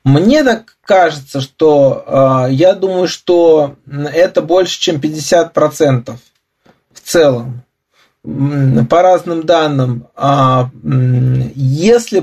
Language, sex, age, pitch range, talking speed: Russian, male, 20-39, 145-205 Hz, 85 wpm